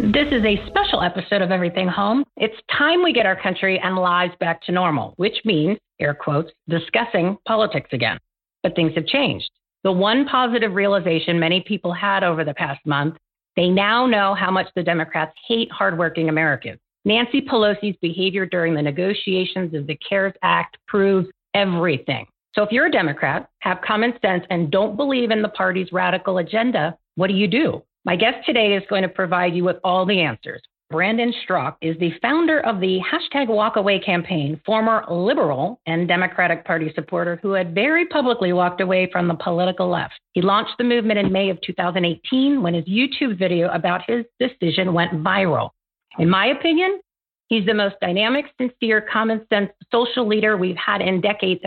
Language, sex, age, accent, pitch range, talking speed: English, female, 40-59, American, 175-220 Hz, 180 wpm